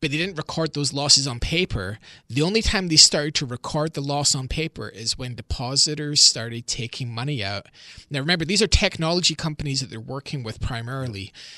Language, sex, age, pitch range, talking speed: English, male, 20-39, 125-155 Hz, 190 wpm